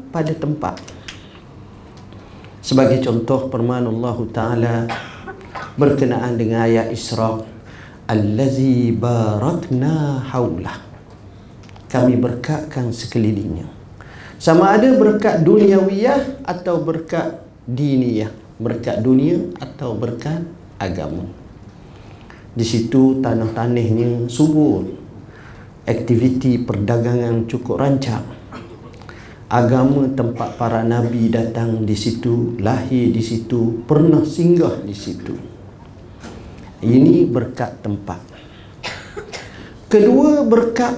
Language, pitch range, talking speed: Malay, 110-135 Hz, 85 wpm